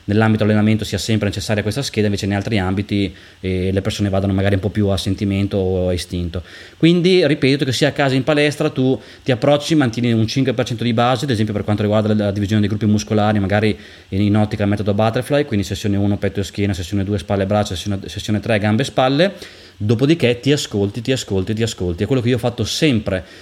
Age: 20-39